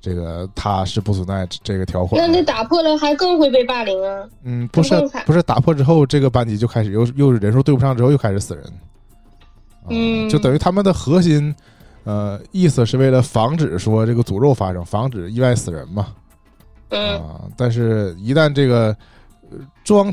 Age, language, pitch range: 20-39, Chinese, 100-135 Hz